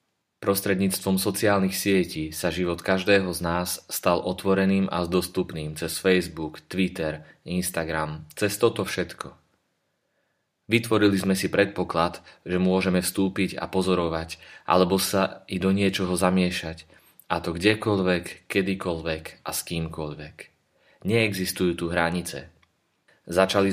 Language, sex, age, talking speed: Slovak, male, 30-49, 115 wpm